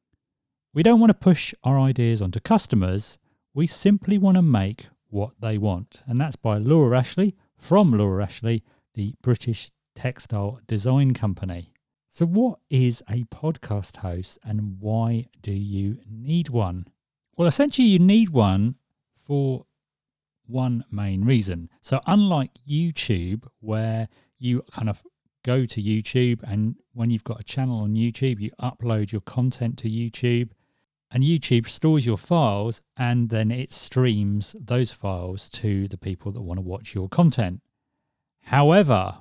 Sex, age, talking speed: male, 40-59, 145 wpm